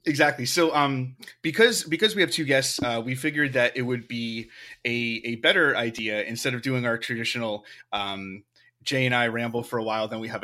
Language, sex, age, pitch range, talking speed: English, male, 30-49, 115-140 Hz, 205 wpm